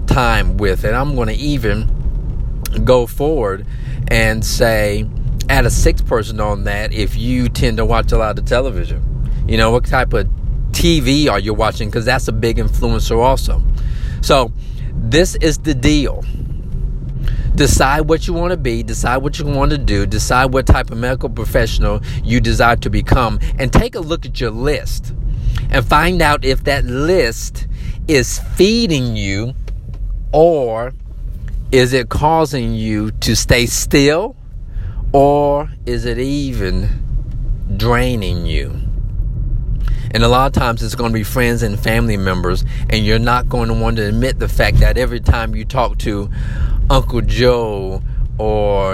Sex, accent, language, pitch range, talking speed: male, American, English, 110-125 Hz, 160 wpm